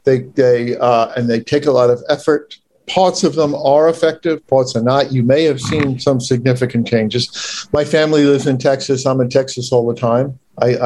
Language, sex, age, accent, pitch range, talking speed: English, male, 50-69, American, 125-190 Hz, 205 wpm